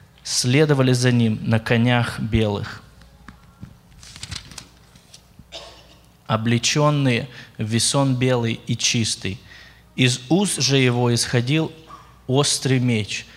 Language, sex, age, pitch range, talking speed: Russian, male, 20-39, 120-140 Hz, 85 wpm